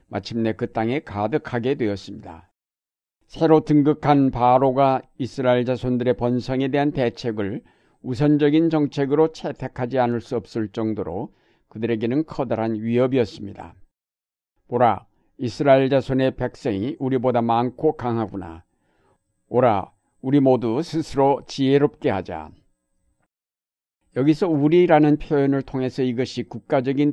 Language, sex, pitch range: Korean, male, 110-140 Hz